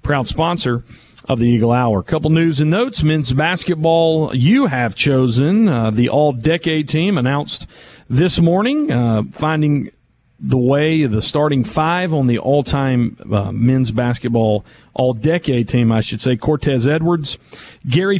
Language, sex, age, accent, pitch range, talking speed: English, male, 40-59, American, 120-175 Hz, 150 wpm